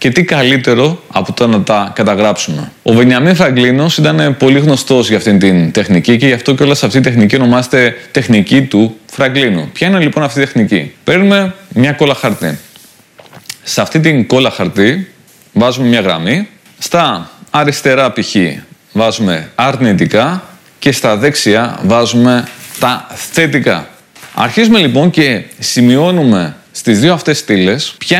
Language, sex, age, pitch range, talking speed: Greek, male, 30-49, 115-145 Hz, 145 wpm